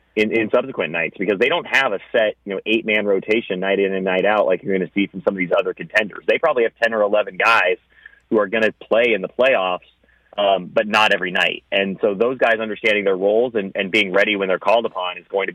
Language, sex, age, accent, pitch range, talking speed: English, male, 30-49, American, 95-110 Hz, 265 wpm